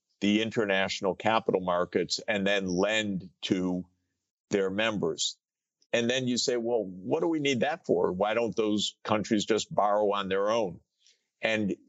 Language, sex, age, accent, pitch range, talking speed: English, male, 50-69, American, 95-120 Hz, 155 wpm